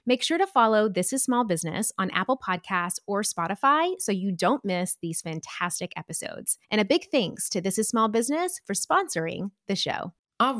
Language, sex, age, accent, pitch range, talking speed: English, female, 20-39, American, 180-245 Hz, 195 wpm